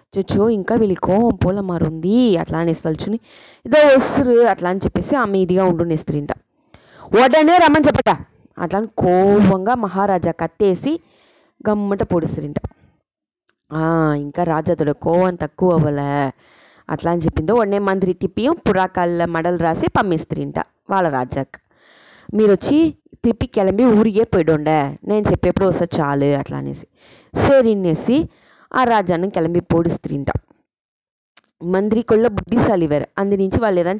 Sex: female